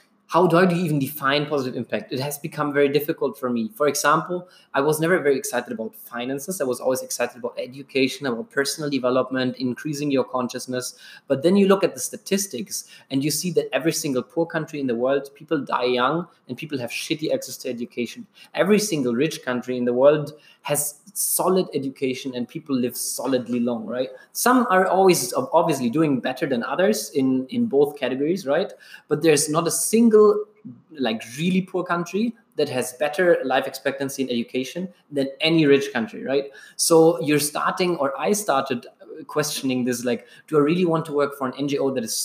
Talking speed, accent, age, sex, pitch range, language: 190 wpm, German, 20-39, male, 130-175 Hz, English